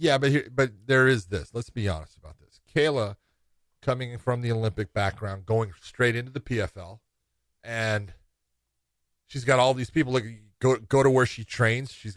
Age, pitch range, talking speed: 40-59, 105-135 Hz, 180 wpm